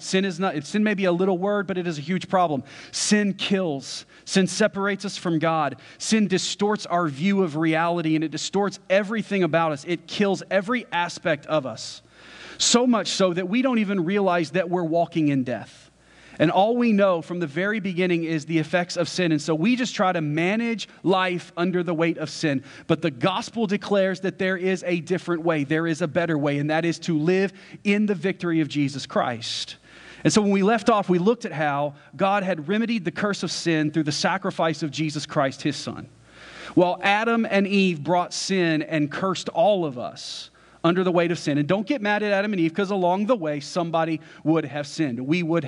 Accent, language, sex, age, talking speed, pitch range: American, English, male, 30-49, 215 wpm, 150-195 Hz